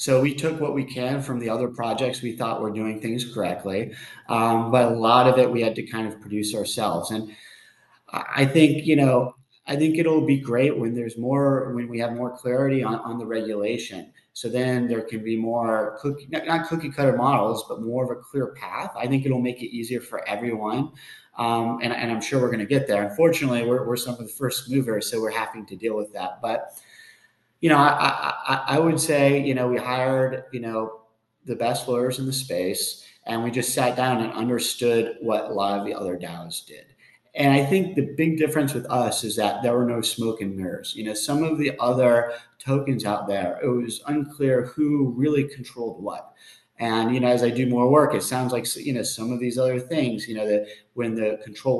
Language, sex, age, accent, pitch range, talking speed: English, male, 30-49, American, 115-135 Hz, 220 wpm